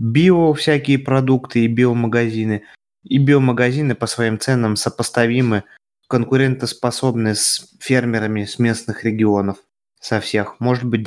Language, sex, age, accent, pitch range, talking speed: Russian, male, 20-39, native, 110-130 Hz, 115 wpm